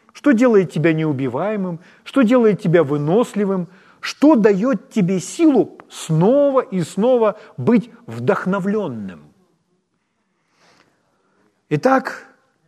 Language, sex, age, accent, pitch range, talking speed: Ukrainian, male, 40-59, native, 145-210 Hz, 85 wpm